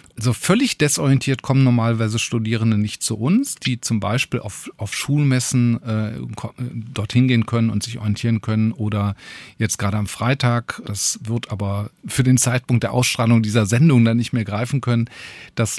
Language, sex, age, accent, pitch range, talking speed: German, male, 40-59, German, 110-130 Hz, 170 wpm